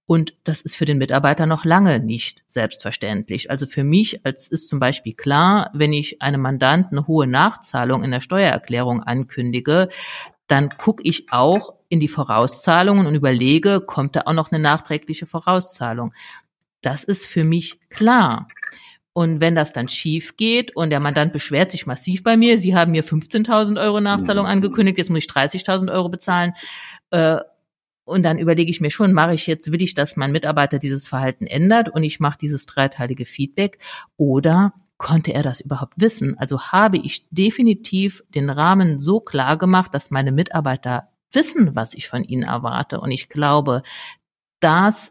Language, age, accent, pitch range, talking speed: German, 50-69, German, 140-185 Hz, 170 wpm